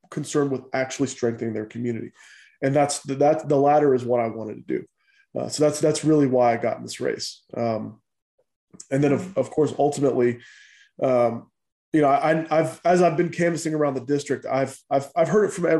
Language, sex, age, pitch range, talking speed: English, male, 20-39, 125-160 Hz, 200 wpm